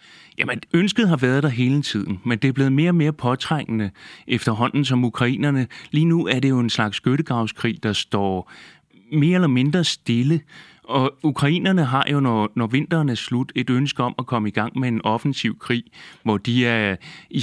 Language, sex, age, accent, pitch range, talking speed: Danish, male, 30-49, native, 110-140 Hz, 195 wpm